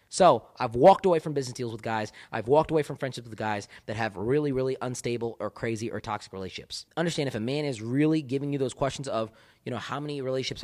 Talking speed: 235 wpm